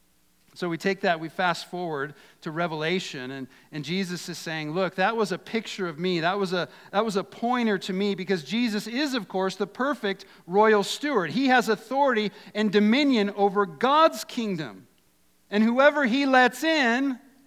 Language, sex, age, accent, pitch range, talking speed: English, male, 50-69, American, 140-215 Hz, 170 wpm